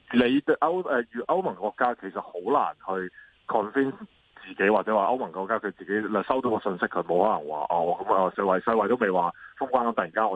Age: 20-39